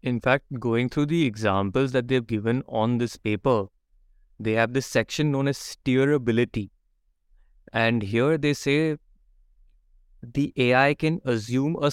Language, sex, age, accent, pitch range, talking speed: English, male, 20-39, Indian, 115-145 Hz, 140 wpm